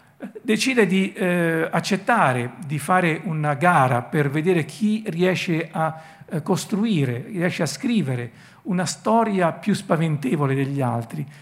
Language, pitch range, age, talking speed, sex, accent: Italian, 150-200 Hz, 50-69, 125 wpm, male, native